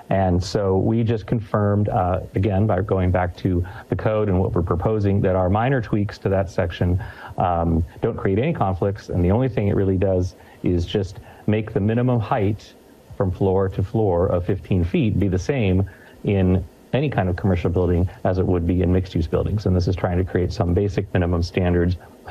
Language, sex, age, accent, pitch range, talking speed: English, male, 40-59, American, 90-110 Hz, 205 wpm